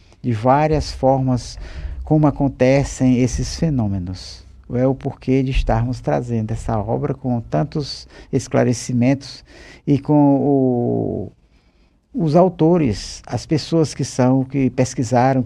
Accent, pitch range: Brazilian, 95-140 Hz